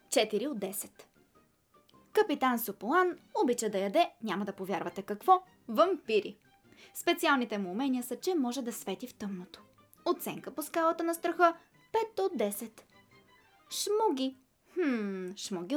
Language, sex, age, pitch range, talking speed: Bulgarian, female, 20-39, 210-330 Hz, 130 wpm